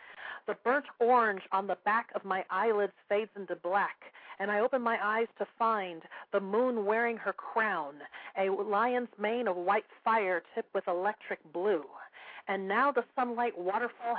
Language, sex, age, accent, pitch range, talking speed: English, female, 40-59, American, 190-230 Hz, 165 wpm